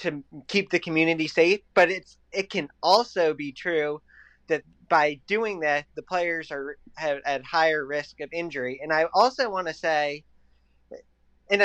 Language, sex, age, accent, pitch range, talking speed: English, male, 20-39, American, 145-185 Hz, 160 wpm